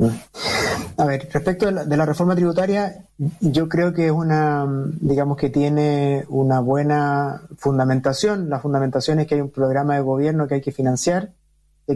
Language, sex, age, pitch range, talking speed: Spanish, male, 30-49, 140-170 Hz, 170 wpm